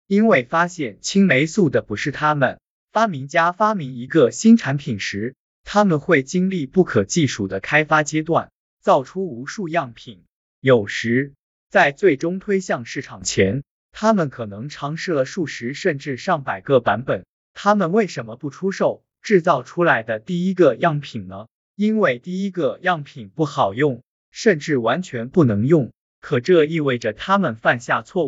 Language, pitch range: Chinese, 125-185 Hz